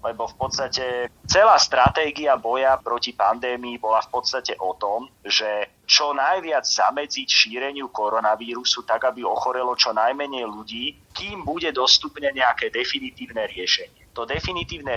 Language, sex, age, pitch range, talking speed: Slovak, male, 30-49, 110-135 Hz, 130 wpm